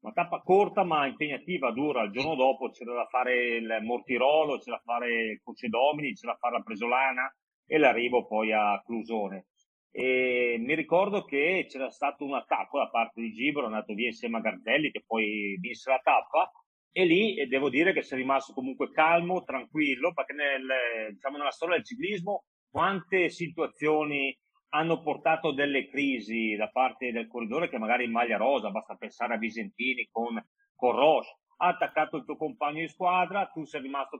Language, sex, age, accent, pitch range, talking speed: Italian, male, 40-59, native, 115-155 Hz, 180 wpm